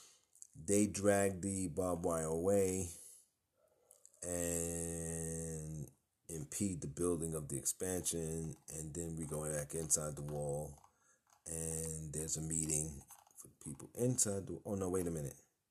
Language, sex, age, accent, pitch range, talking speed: English, male, 30-49, American, 80-90 Hz, 130 wpm